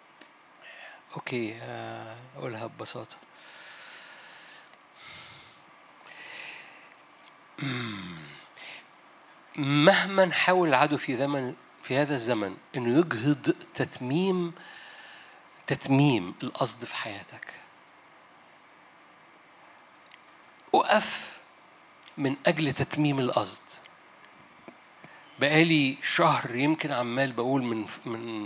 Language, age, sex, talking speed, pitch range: Arabic, 60-79, male, 65 wpm, 130-180 Hz